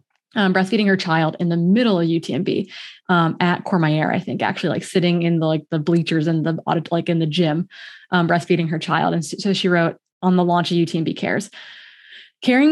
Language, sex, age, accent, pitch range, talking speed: English, female, 20-39, American, 165-200 Hz, 210 wpm